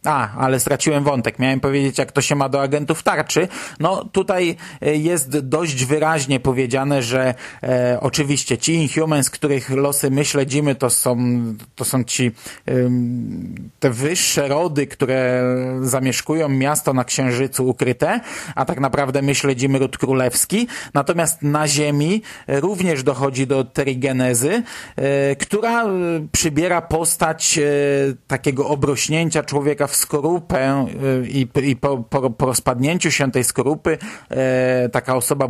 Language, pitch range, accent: Polish, 130-155 Hz, native